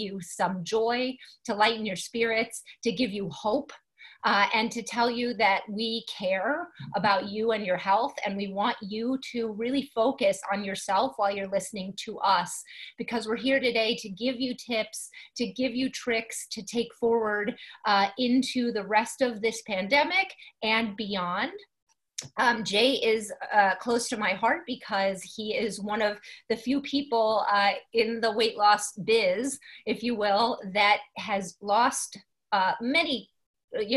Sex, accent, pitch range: female, American, 195-235 Hz